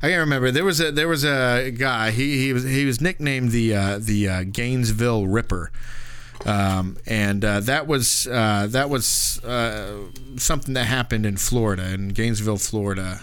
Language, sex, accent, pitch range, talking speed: English, male, American, 100-125 Hz, 175 wpm